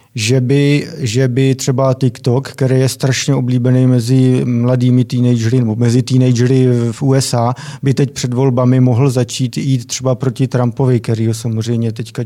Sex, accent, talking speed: male, native, 150 wpm